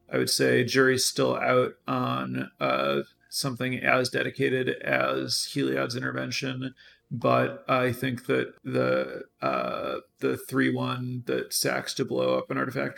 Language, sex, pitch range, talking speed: English, male, 115-135 Hz, 130 wpm